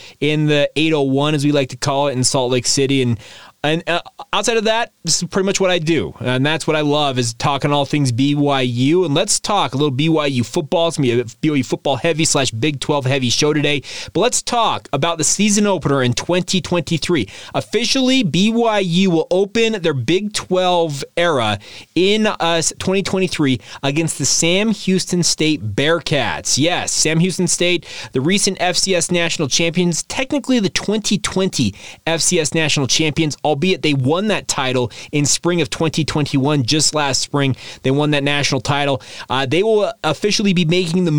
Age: 30-49